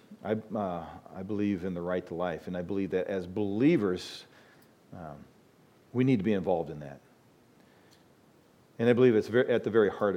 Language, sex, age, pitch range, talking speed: English, male, 40-59, 95-125 Hz, 190 wpm